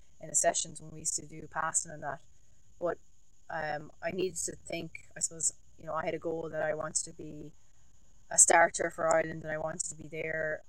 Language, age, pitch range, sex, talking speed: English, 20-39, 145-165 Hz, female, 225 wpm